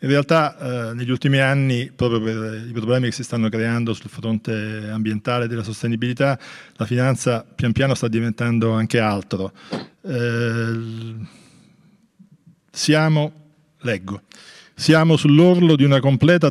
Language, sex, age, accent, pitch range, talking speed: Italian, male, 40-59, native, 110-135 Hz, 125 wpm